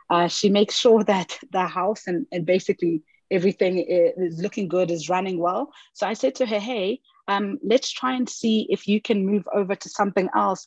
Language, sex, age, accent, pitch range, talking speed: English, female, 30-49, South African, 190-240 Hz, 200 wpm